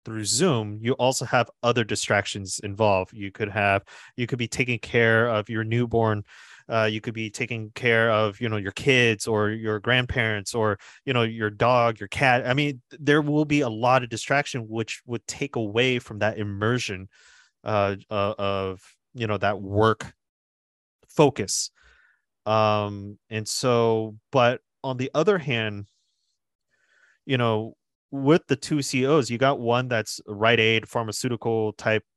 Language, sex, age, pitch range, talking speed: English, male, 30-49, 105-125 Hz, 160 wpm